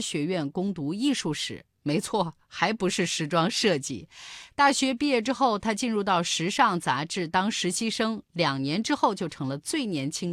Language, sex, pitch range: Chinese, female, 155-240 Hz